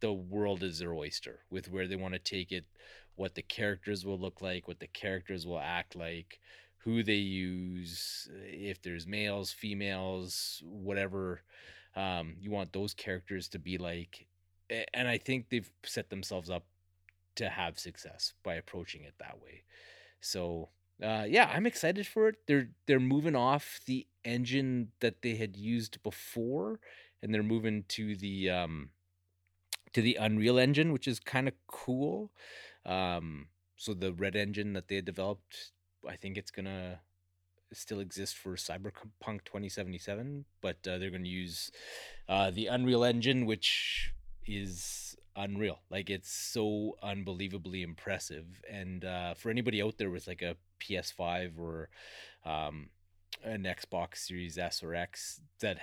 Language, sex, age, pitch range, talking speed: English, male, 30-49, 90-110 Hz, 150 wpm